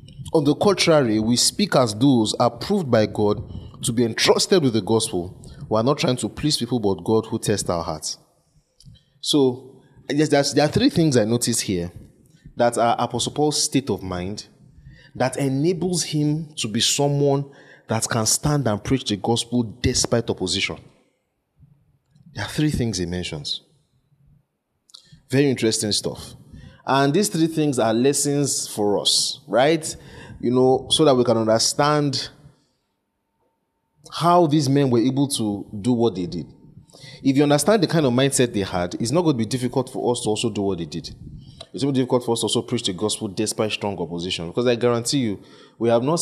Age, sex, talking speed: 30-49, male, 180 wpm